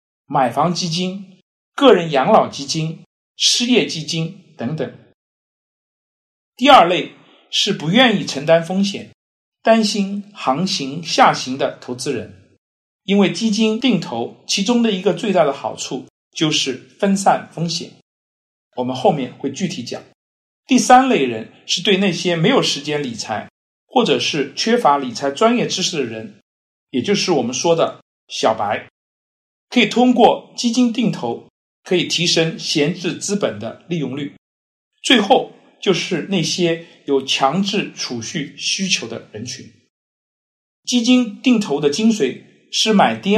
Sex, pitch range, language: male, 150-220 Hz, Chinese